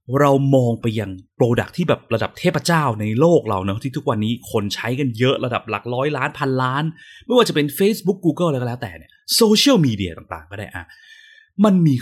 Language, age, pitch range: Thai, 20-39, 110-155 Hz